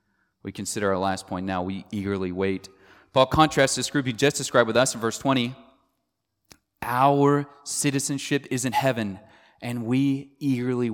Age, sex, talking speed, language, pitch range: 30-49, male, 160 wpm, English, 110-140 Hz